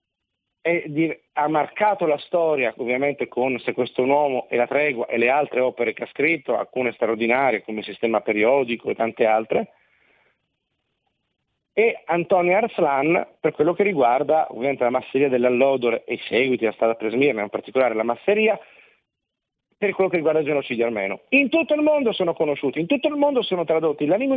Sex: male